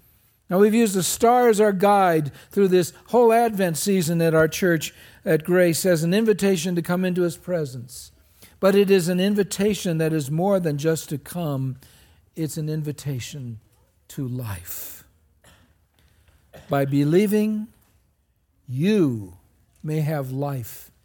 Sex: male